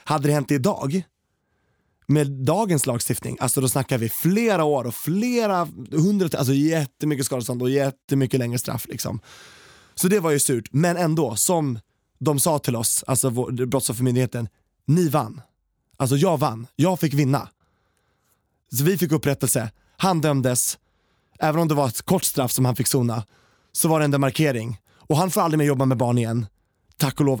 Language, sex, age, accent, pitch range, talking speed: Swedish, male, 20-39, native, 120-155 Hz, 175 wpm